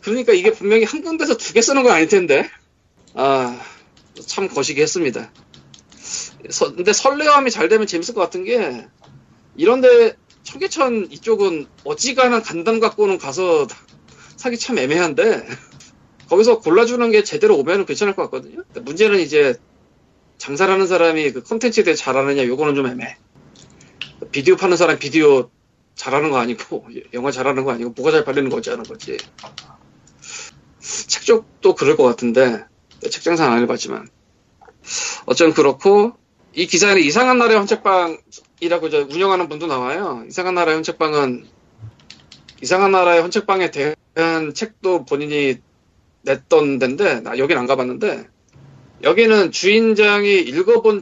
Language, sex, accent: Korean, male, native